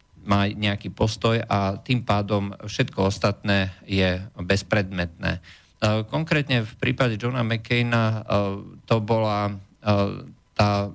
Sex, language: male, Slovak